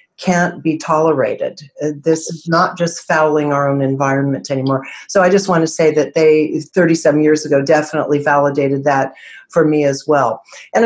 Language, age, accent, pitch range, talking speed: English, 50-69, American, 155-190 Hz, 170 wpm